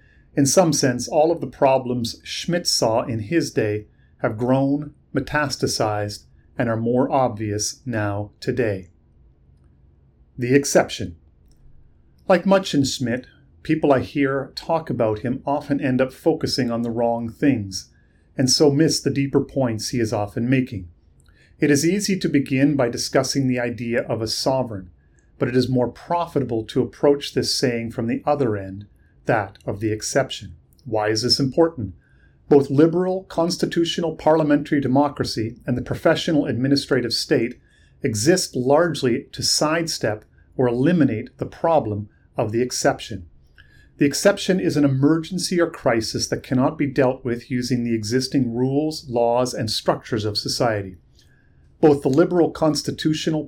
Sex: male